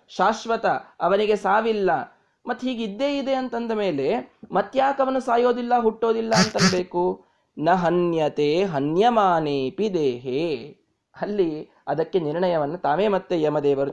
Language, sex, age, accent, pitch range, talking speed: Kannada, male, 20-39, native, 180-245 Hz, 105 wpm